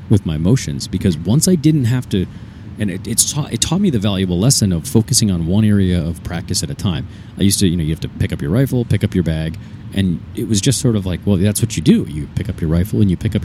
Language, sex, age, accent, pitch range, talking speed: English, male, 30-49, American, 90-110 Hz, 295 wpm